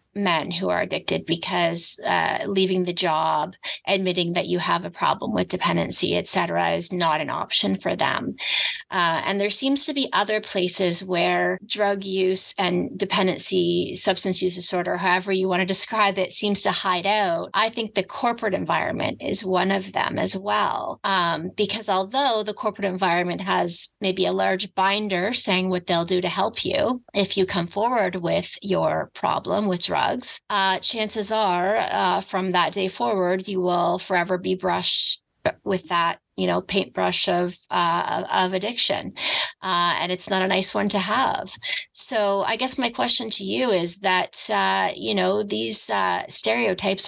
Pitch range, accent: 180-210 Hz, American